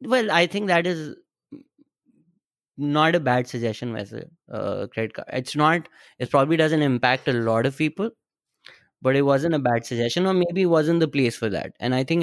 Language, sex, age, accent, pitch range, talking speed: English, male, 20-39, Indian, 125-165 Hz, 200 wpm